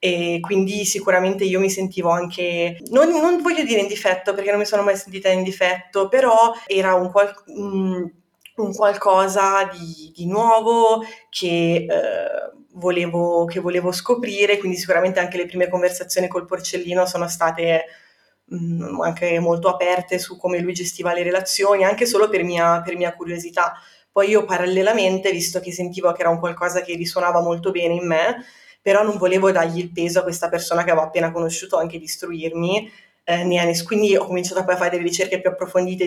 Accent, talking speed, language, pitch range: native, 170 wpm, Italian, 170-195 Hz